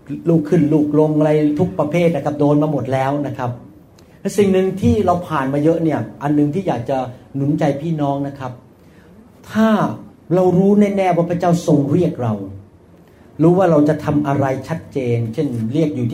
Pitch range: 145-190 Hz